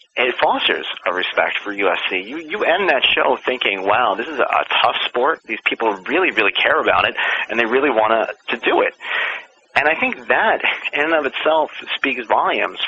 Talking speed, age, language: 200 wpm, 30-49, English